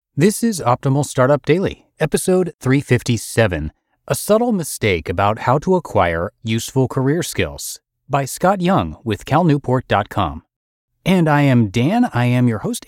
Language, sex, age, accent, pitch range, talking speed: English, male, 30-49, American, 100-140 Hz, 140 wpm